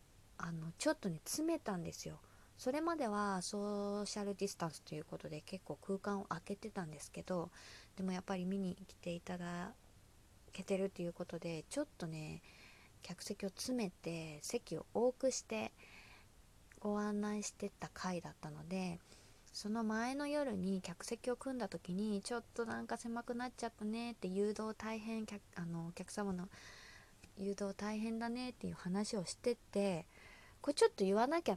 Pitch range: 175-235 Hz